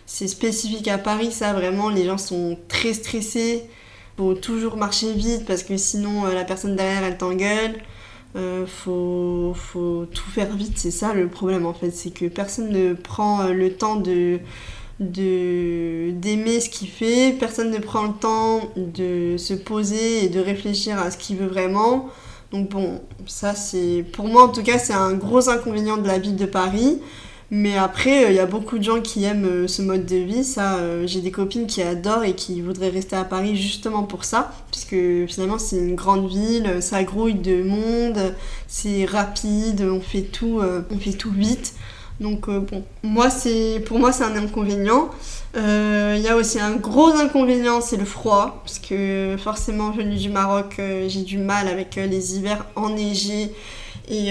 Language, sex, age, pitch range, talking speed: French, female, 20-39, 185-220 Hz, 190 wpm